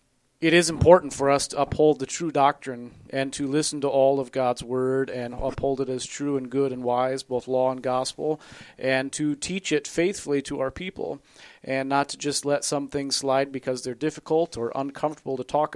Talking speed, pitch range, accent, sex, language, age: 205 wpm, 130-145 Hz, American, male, English, 40-59